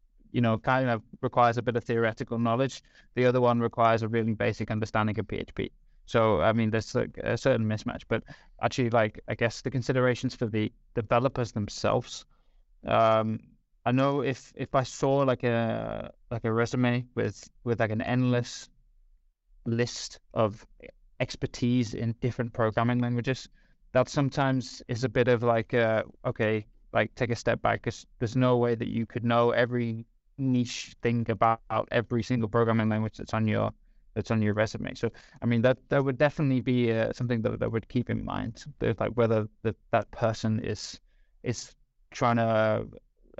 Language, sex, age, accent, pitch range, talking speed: English, male, 20-39, British, 110-125 Hz, 175 wpm